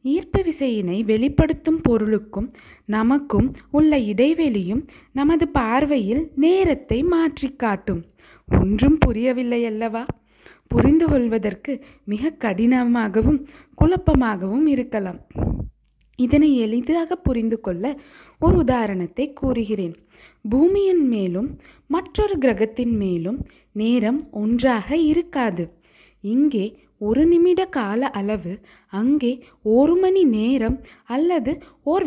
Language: Tamil